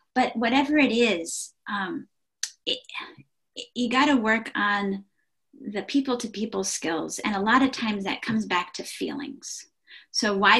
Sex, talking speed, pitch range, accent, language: female, 155 wpm, 195-270 Hz, American, English